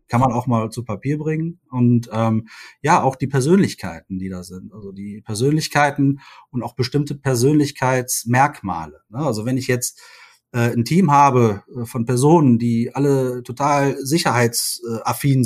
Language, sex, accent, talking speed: German, male, German, 150 wpm